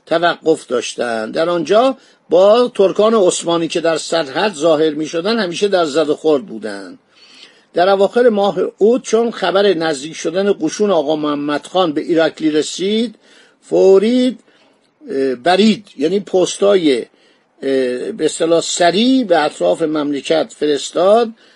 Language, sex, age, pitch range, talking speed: Persian, male, 50-69, 165-220 Hz, 115 wpm